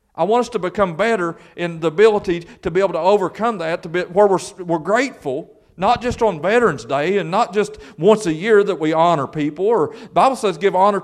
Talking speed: 230 wpm